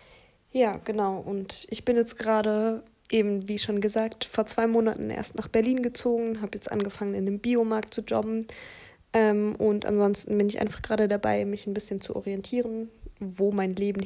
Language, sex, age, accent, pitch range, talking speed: German, female, 20-39, German, 200-225 Hz, 180 wpm